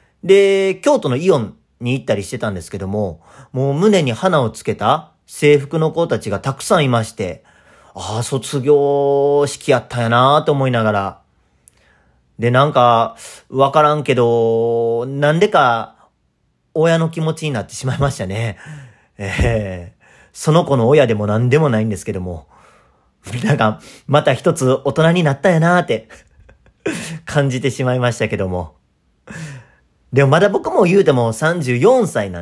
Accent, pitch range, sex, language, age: native, 115-160 Hz, male, Japanese, 40-59